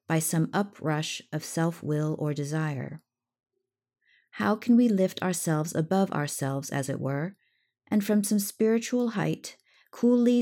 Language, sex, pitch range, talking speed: English, female, 155-200 Hz, 130 wpm